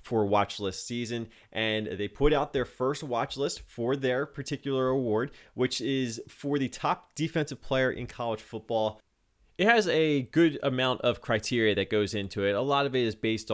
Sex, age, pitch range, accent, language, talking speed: male, 20-39, 105-125 Hz, American, English, 190 wpm